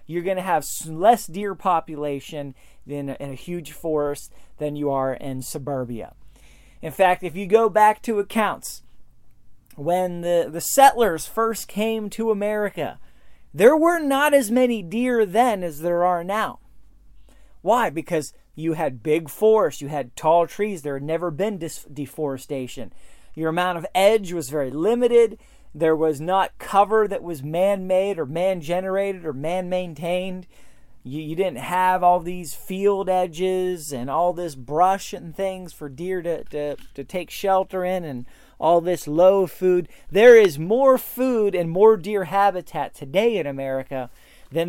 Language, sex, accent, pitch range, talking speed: English, male, American, 155-205 Hz, 155 wpm